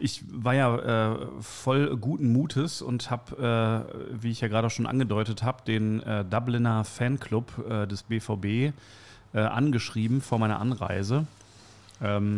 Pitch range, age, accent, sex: 100-125 Hz, 40-59, German, male